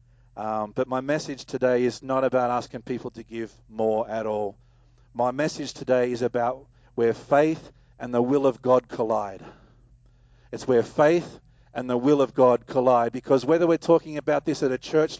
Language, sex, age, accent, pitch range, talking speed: English, male, 50-69, Australian, 125-150 Hz, 180 wpm